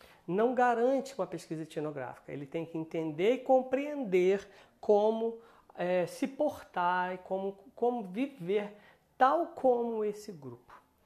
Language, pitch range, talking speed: Portuguese, 160-240 Hz, 120 wpm